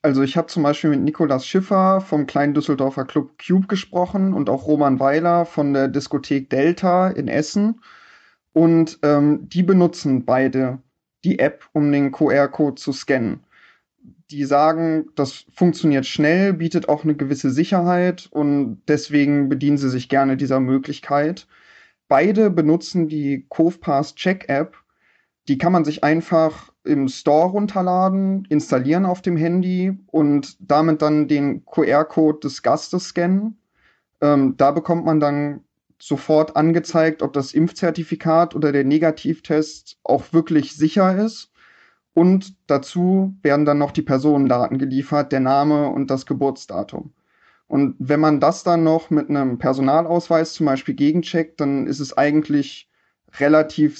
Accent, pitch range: German, 145-170 Hz